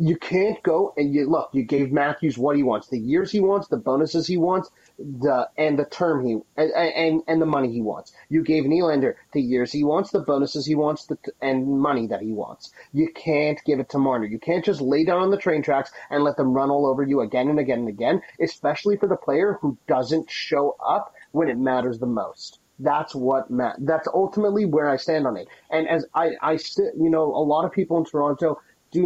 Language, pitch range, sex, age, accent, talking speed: English, 140-165 Hz, male, 30-49, American, 230 wpm